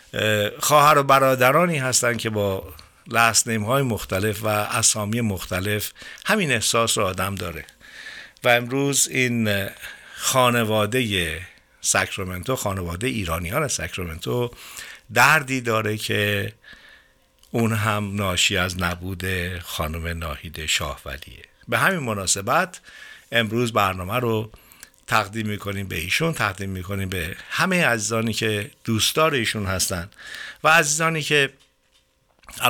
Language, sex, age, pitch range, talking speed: Persian, male, 60-79, 95-120 Hz, 105 wpm